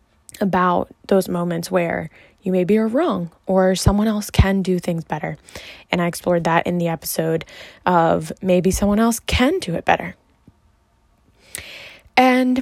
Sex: female